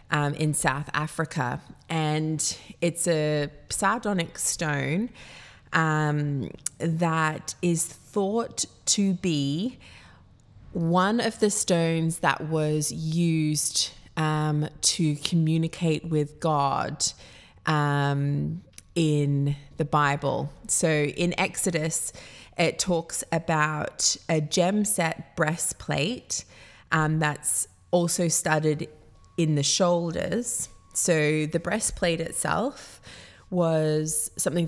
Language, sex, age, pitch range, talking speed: English, female, 20-39, 150-170 Hz, 95 wpm